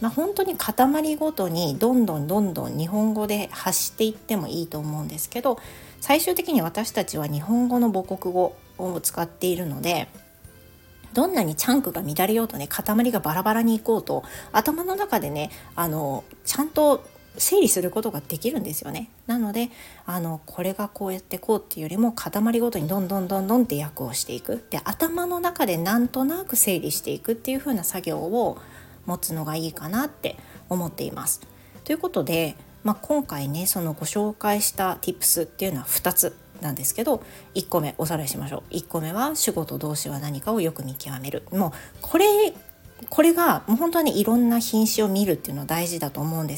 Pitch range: 160-240 Hz